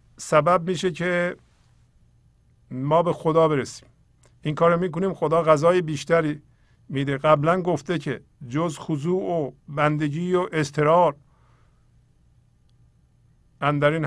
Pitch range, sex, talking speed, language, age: 125-155 Hz, male, 100 wpm, Persian, 50-69